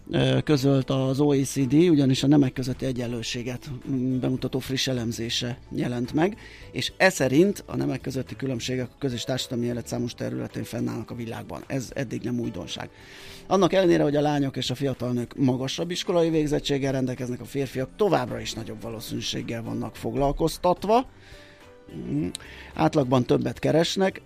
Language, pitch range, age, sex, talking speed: Hungarian, 115-140 Hz, 30-49, male, 140 wpm